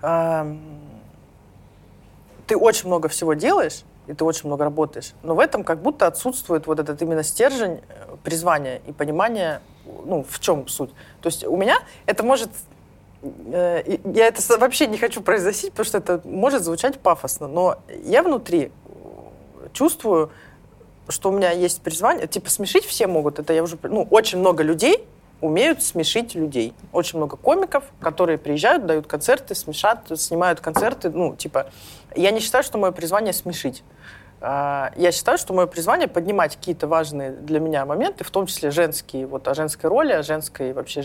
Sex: female